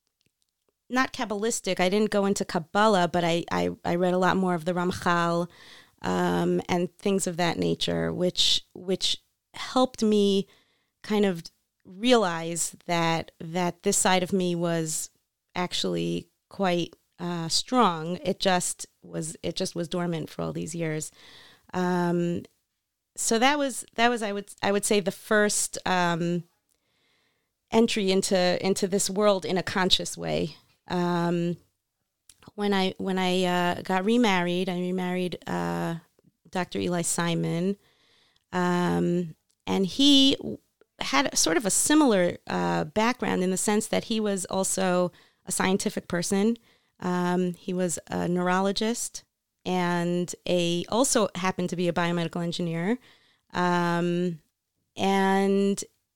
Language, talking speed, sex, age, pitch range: English, 135 wpm, female, 30-49, 170-200 Hz